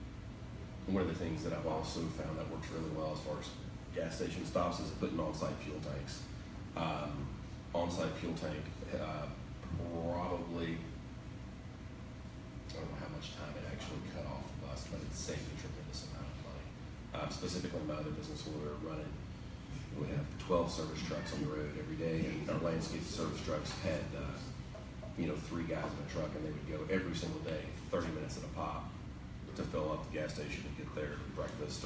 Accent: American